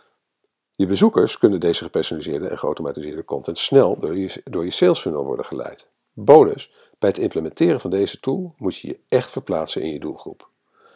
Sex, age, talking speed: male, 50-69, 175 wpm